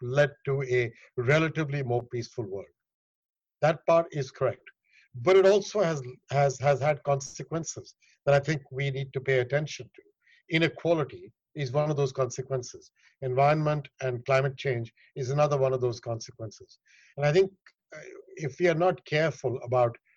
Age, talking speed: 60-79, 160 wpm